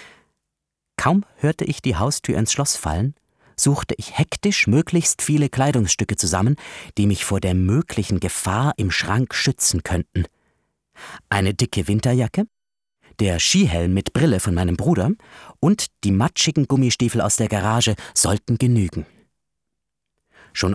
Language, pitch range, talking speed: German, 100-145 Hz, 130 wpm